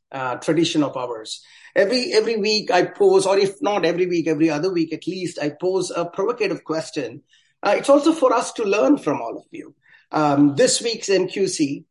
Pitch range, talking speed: 150-200 Hz, 195 wpm